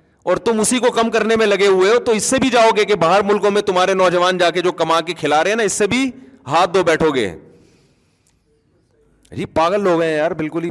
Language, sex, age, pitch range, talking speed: Urdu, male, 40-59, 150-210 Hz, 245 wpm